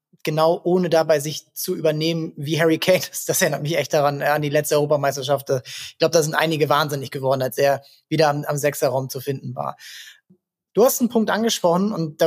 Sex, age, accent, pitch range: male, 20-39, German, 155-185 Hz